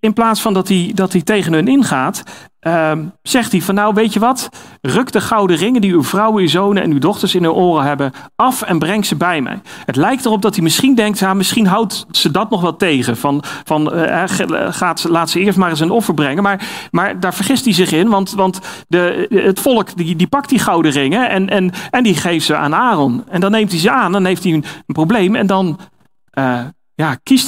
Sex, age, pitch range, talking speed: male, 40-59, 160-220 Hz, 245 wpm